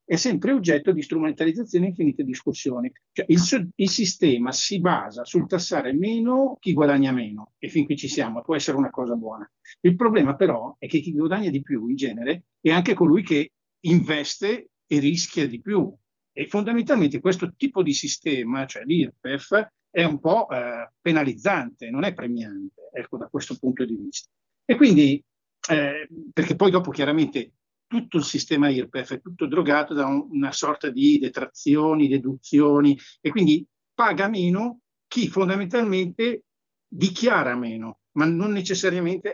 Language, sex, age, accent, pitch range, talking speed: Italian, male, 50-69, native, 140-200 Hz, 160 wpm